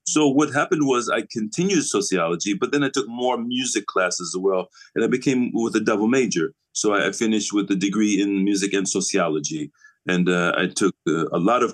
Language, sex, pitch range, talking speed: English, male, 90-105 Hz, 215 wpm